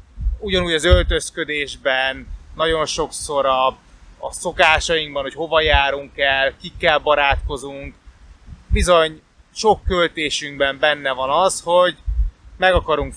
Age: 20-39